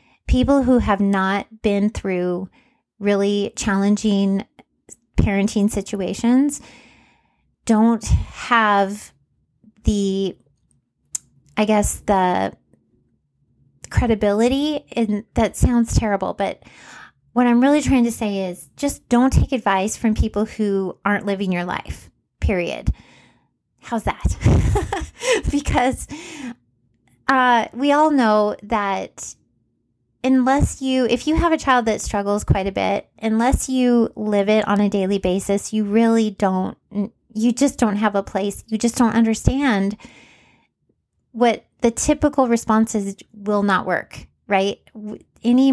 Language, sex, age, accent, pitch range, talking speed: English, female, 30-49, American, 200-240 Hz, 120 wpm